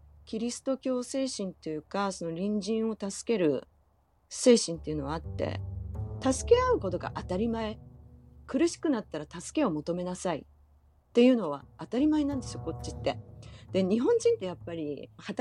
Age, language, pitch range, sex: 40-59, Japanese, 150-245 Hz, female